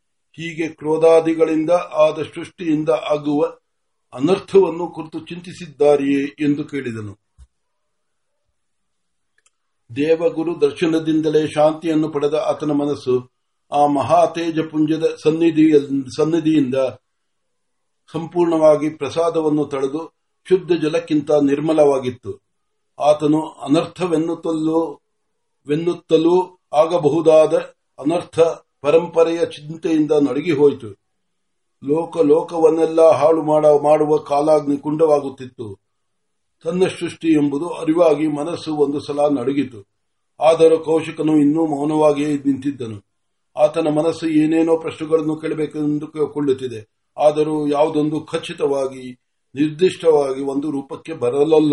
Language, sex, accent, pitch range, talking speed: Marathi, male, native, 145-160 Hz, 45 wpm